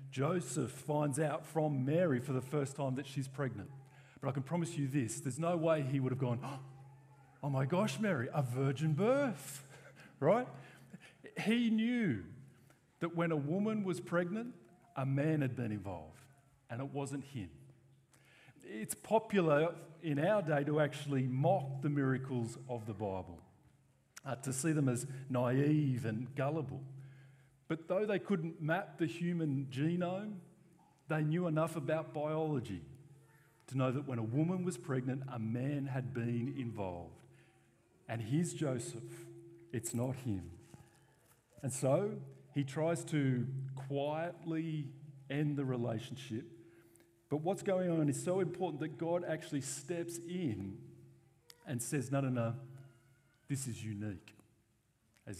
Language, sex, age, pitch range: English, male, 50-69, 125-160 Hz